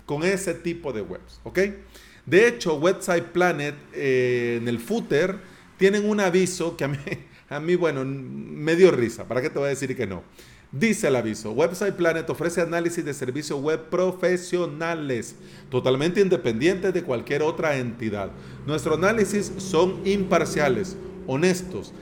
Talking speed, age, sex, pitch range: 150 wpm, 40-59, male, 130-180 Hz